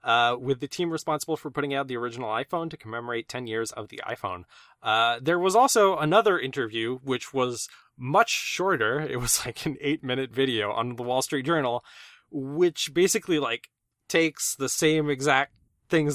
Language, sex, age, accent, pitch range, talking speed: English, male, 20-39, American, 125-165 Hz, 175 wpm